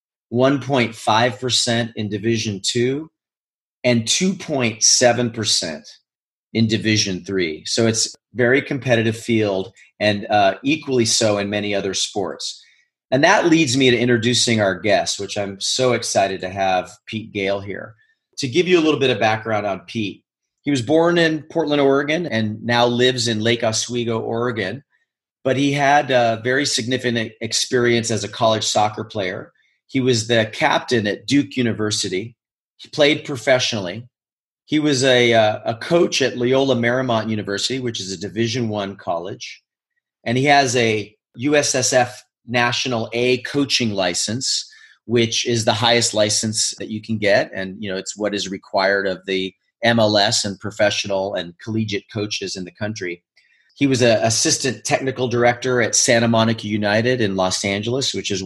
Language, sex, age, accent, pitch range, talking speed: English, male, 40-59, American, 105-130 Hz, 155 wpm